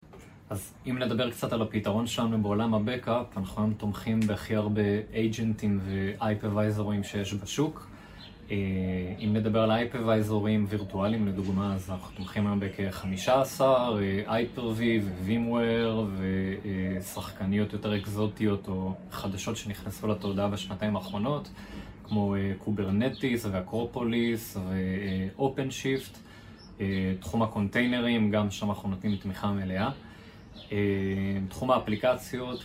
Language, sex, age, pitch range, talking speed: Hebrew, male, 20-39, 100-115 Hz, 105 wpm